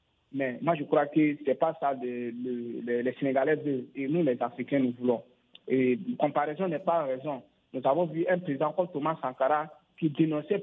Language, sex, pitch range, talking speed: French, male, 145-195 Hz, 200 wpm